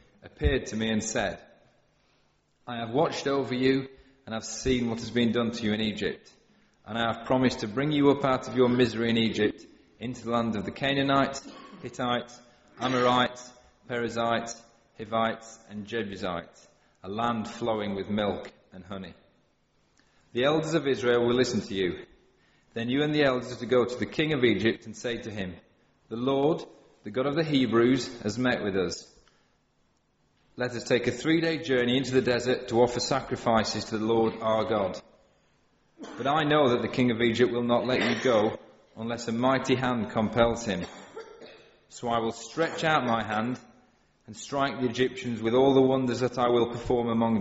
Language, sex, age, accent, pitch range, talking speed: English, male, 30-49, British, 115-130 Hz, 185 wpm